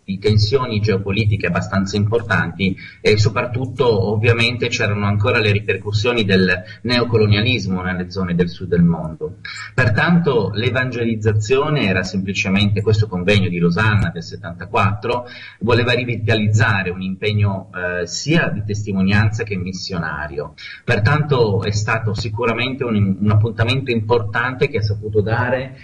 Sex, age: male, 30-49